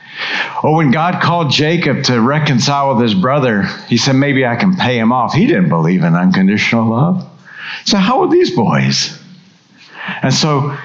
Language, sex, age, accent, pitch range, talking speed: English, male, 50-69, American, 135-185 Hz, 170 wpm